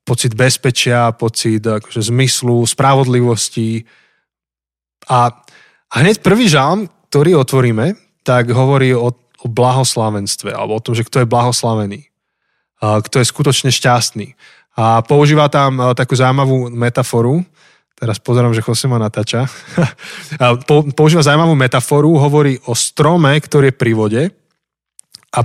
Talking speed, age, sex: 130 wpm, 20-39, male